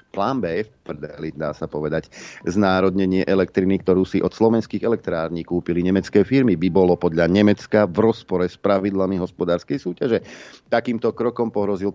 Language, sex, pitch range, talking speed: Slovak, male, 90-110 Hz, 140 wpm